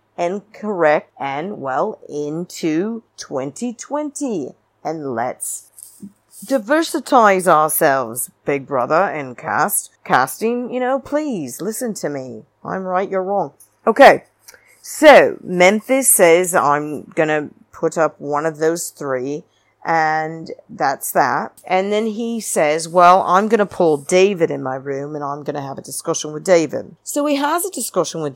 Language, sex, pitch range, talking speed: English, female, 150-240 Hz, 145 wpm